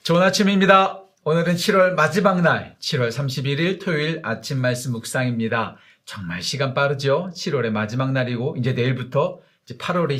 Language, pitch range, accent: Korean, 120-160 Hz, native